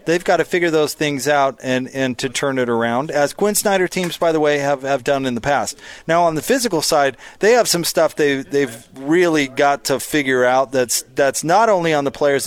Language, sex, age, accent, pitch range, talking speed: English, male, 30-49, American, 120-140 Hz, 235 wpm